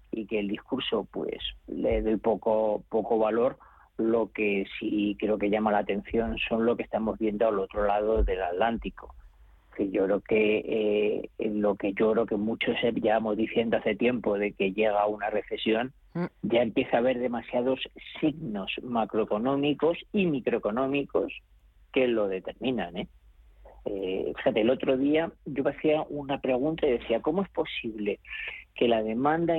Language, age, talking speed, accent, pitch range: Spanish, 40-59, 165 wpm, Spanish, 110-150 Hz